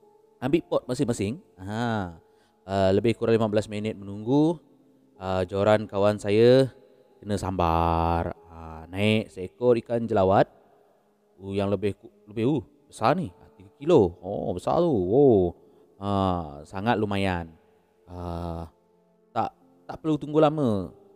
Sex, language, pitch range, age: male, Malay, 95-120 Hz, 30-49